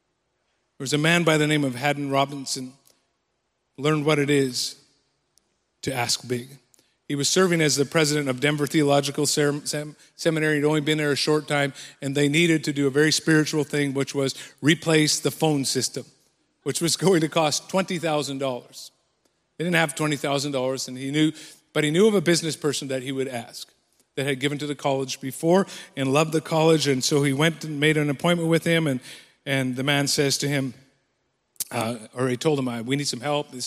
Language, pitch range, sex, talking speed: English, 135-155 Hz, male, 205 wpm